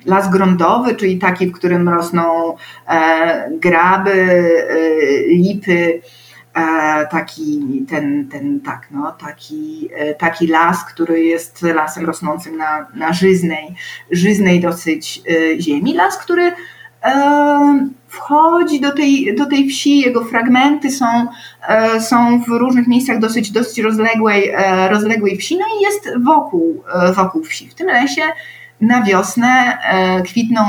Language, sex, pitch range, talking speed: Polish, female, 170-245 Hz, 135 wpm